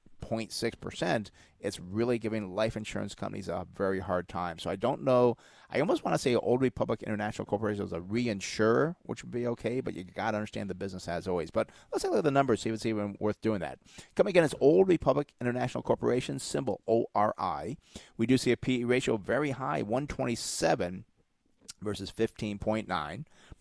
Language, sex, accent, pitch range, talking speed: English, male, American, 105-130 Hz, 185 wpm